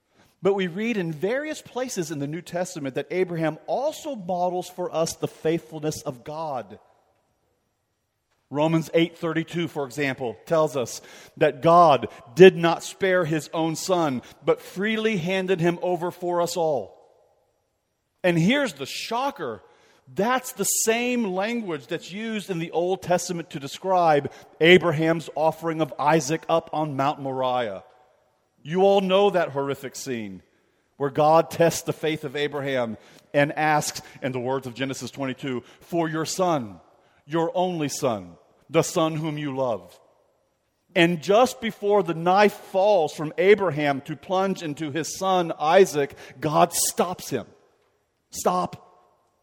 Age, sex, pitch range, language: 40-59, male, 140-180 Hz, English